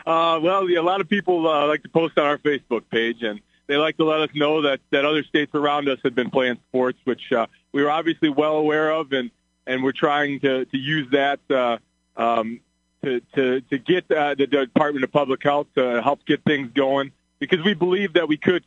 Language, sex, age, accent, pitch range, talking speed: English, male, 30-49, American, 125-150 Hz, 230 wpm